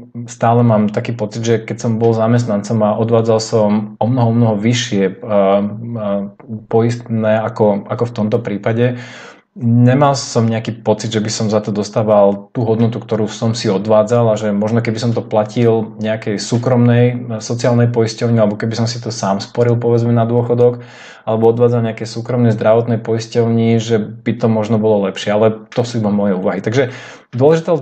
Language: Slovak